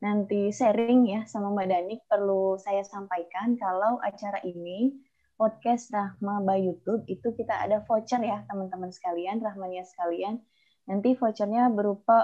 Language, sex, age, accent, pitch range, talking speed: Indonesian, female, 20-39, native, 190-235 Hz, 135 wpm